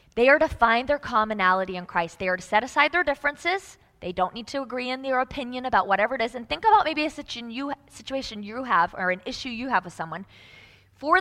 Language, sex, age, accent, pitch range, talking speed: English, female, 20-39, American, 190-265 Hz, 230 wpm